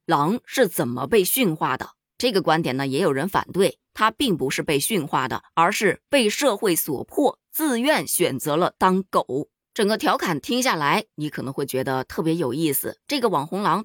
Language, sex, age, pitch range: Chinese, female, 20-39, 155-235 Hz